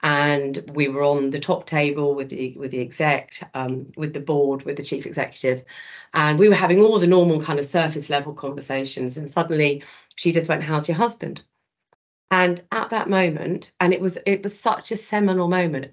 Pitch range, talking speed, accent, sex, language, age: 145-185 Hz, 200 wpm, British, female, English, 40-59